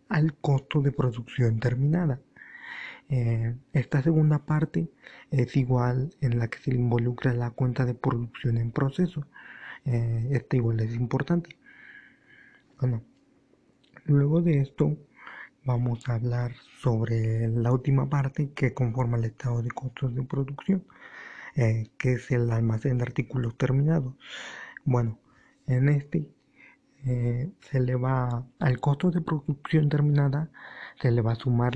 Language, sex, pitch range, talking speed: Spanish, male, 120-145 Hz, 135 wpm